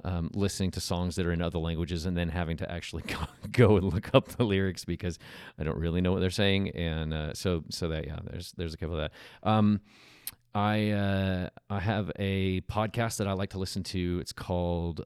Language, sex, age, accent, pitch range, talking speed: English, male, 40-59, American, 85-105 Hz, 225 wpm